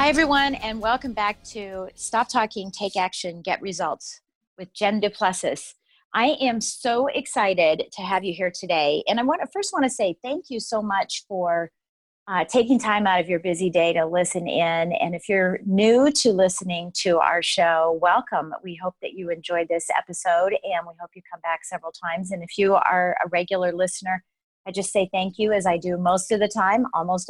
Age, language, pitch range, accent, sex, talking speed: 40-59, English, 175-220 Hz, American, female, 205 wpm